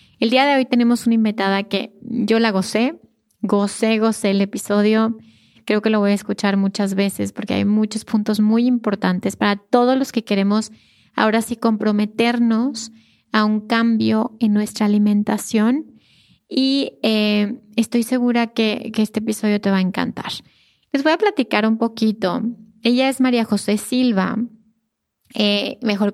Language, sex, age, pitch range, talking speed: Spanish, female, 20-39, 205-235 Hz, 155 wpm